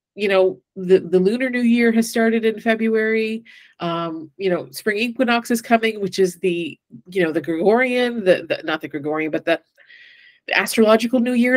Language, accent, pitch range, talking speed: English, American, 180-230 Hz, 185 wpm